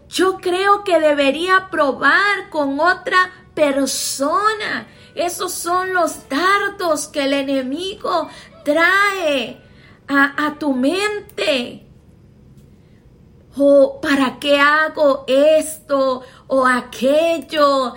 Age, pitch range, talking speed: 30-49, 280-360 Hz, 90 wpm